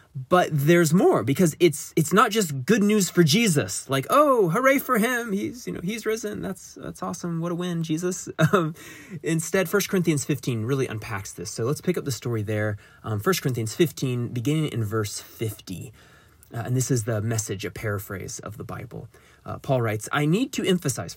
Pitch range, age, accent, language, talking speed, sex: 110-160 Hz, 20-39, American, English, 200 wpm, male